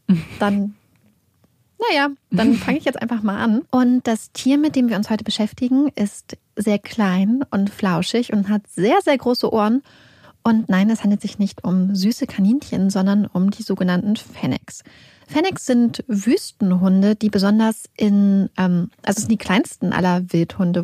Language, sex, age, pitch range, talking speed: German, female, 30-49, 200-245 Hz, 165 wpm